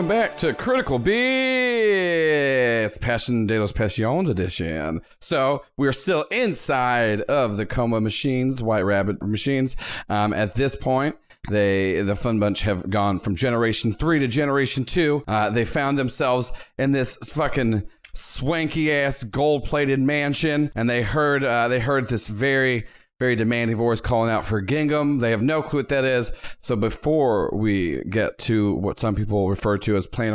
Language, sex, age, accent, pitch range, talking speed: English, male, 30-49, American, 110-155 Hz, 170 wpm